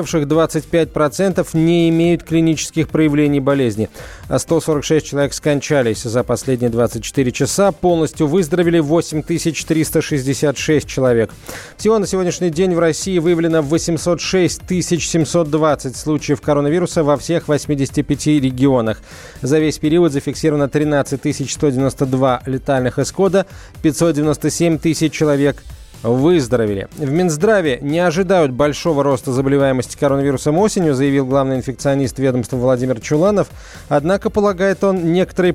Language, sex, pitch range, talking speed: Russian, male, 135-165 Hz, 115 wpm